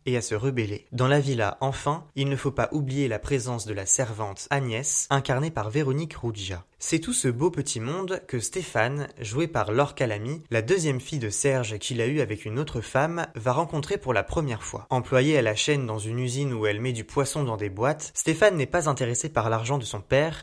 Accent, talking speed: French, 225 wpm